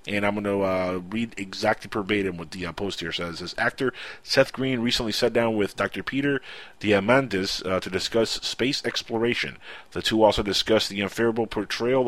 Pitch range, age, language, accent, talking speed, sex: 100-120 Hz, 30-49, English, American, 185 wpm, male